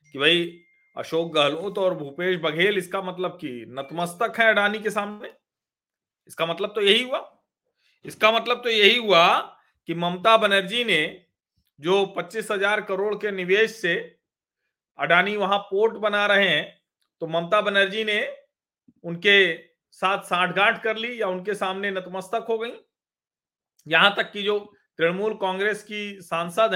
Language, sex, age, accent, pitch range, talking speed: Hindi, male, 40-59, native, 175-210 Hz, 150 wpm